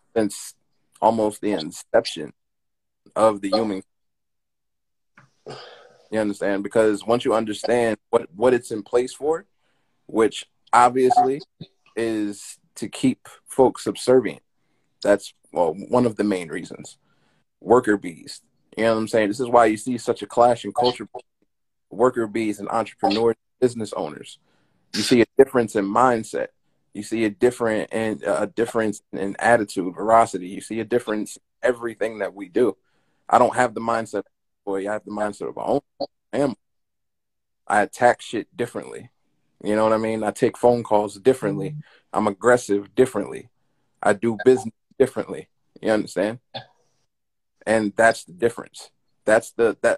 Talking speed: 150 wpm